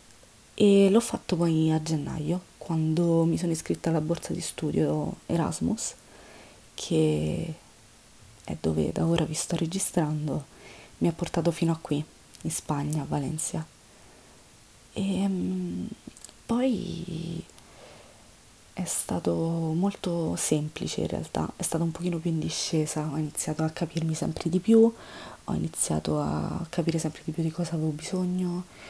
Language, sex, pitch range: Italian, female, 150-180 Hz